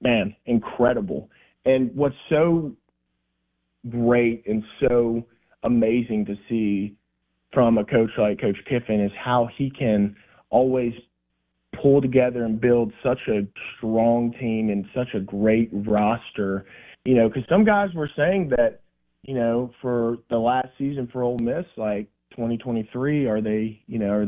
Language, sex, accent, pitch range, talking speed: English, male, American, 110-130 Hz, 145 wpm